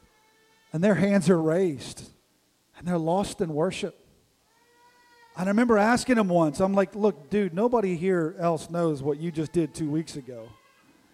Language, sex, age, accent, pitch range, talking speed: English, male, 40-59, American, 170-215 Hz, 165 wpm